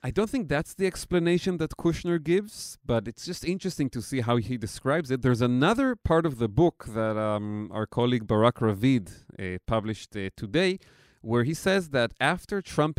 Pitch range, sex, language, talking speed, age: 110-150 Hz, male, English, 190 wpm, 30-49